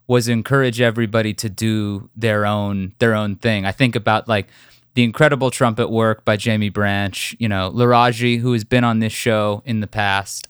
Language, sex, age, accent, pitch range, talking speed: English, male, 20-39, American, 110-135 Hz, 190 wpm